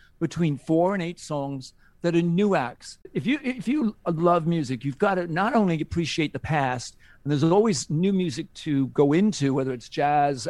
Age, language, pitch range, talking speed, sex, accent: 50-69, English, 140-185 Hz, 195 wpm, male, American